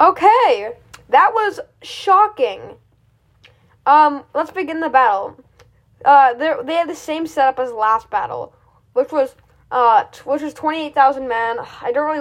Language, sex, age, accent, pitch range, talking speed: English, female, 10-29, American, 265-345 Hz, 145 wpm